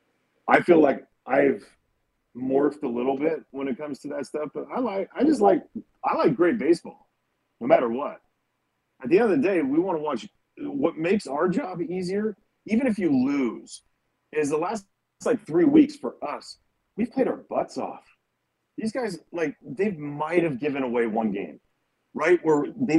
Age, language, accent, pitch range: 40-59, English, American, 130-210 Hz